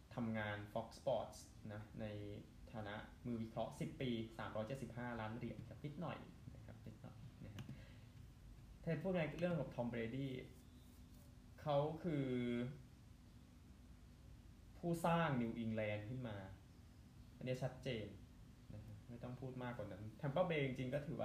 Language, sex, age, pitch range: Thai, male, 20-39, 110-125 Hz